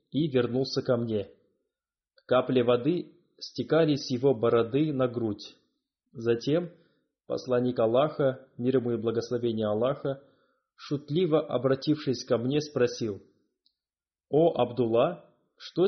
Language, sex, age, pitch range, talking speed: Russian, male, 20-39, 120-150 Hz, 110 wpm